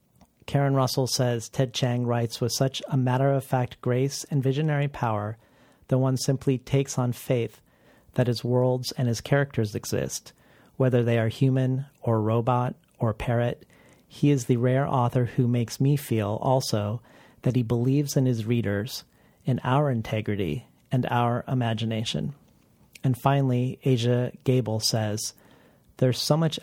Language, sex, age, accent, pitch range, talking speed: English, male, 40-59, American, 115-135 Hz, 145 wpm